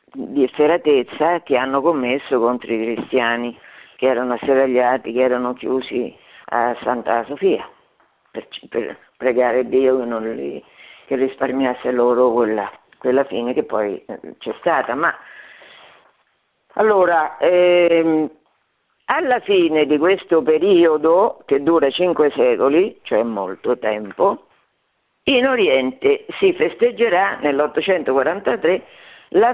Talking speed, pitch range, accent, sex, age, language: 110 wpm, 125-180 Hz, native, female, 50-69, Italian